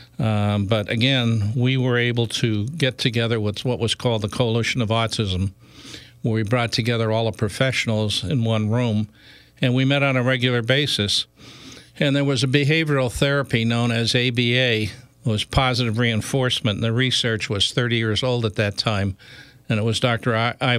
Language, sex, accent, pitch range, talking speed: English, male, American, 110-130 Hz, 180 wpm